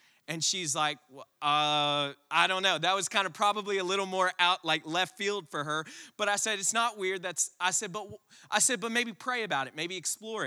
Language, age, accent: English, 20-39, American